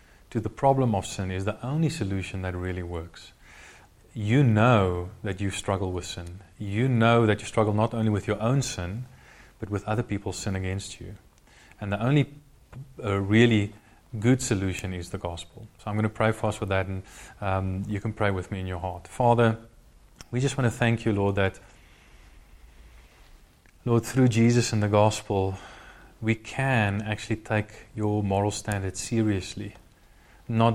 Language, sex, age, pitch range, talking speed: English, male, 30-49, 90-110 Hz, 175 wpm